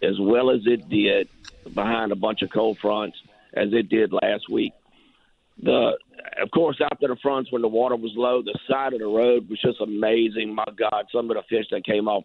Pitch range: 105-125 Hz